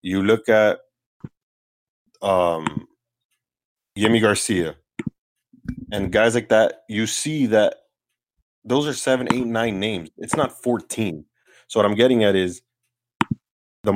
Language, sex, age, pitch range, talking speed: English, male, 30-49, 95-120 Hz, 125 wpm